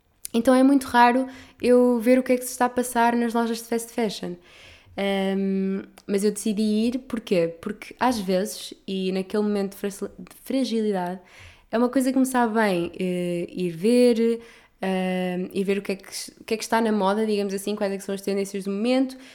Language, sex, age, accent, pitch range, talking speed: Portuguese, female, 20-39, Brazilian, 195-245 Hz, 210 wpm